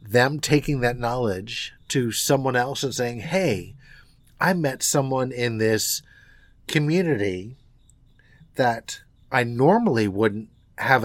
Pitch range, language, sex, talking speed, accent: 115-150 Hz, English, male, 115 wpm, American